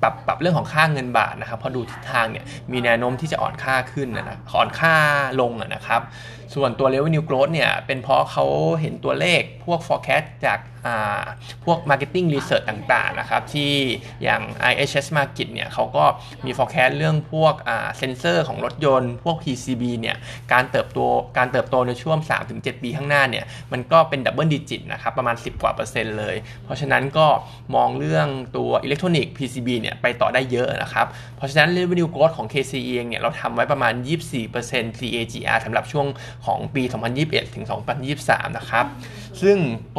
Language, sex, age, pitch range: Thai, male, 20-39, 120-145 Hz